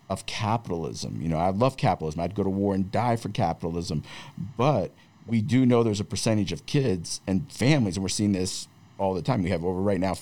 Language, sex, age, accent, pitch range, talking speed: English, male, 50-69, American, 100-130 Hz, 225 wpm